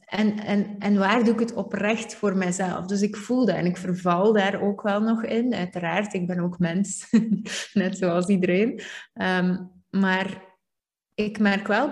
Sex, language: female, Dutch